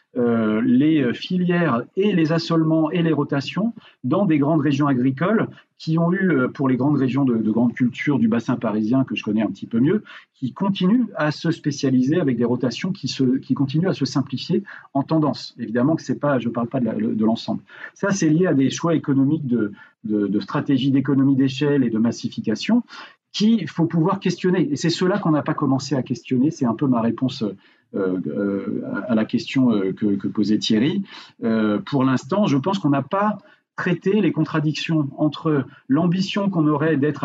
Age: 40-59